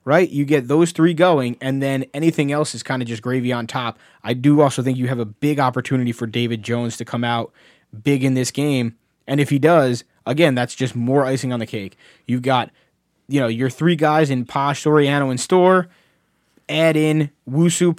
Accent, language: American, English